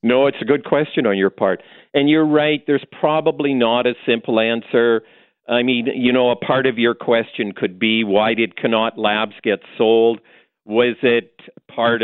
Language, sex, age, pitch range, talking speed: English, male, 50-69, 110-135 Hz, 185 wpm